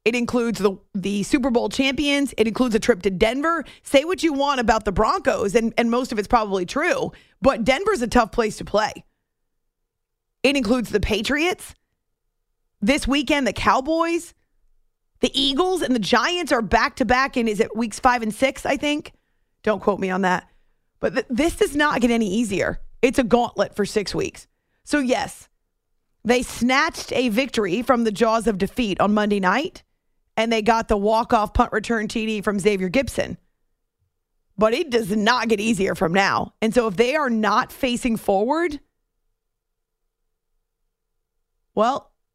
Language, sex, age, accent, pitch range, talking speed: English, female, 30-49, American, 210-270 Hz, 165 wpm